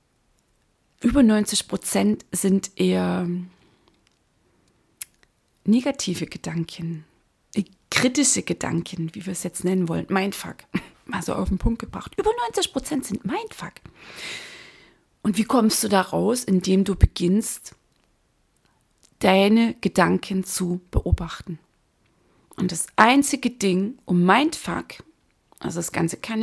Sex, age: female, 30-49